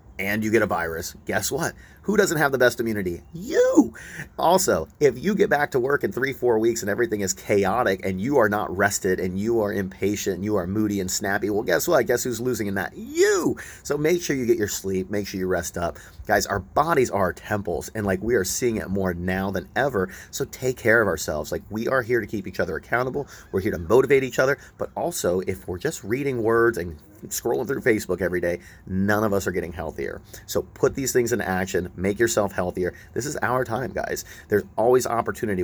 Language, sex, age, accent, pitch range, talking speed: English, male, 30-49, American, 90-115 Hz, 230 wpm